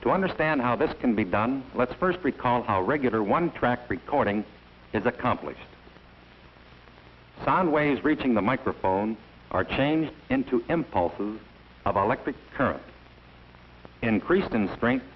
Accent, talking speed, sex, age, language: American, 125 wpm, male, 60-79, English